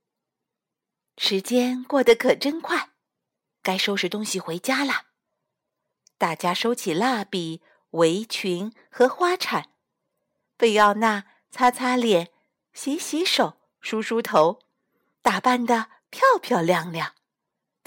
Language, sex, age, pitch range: Chinese, female, 50-69, 205-270 Hz